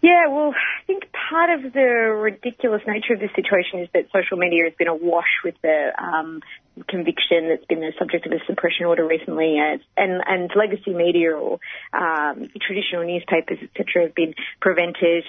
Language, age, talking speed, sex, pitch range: English, 30-49, 180 wpm, female, 180-220 Hz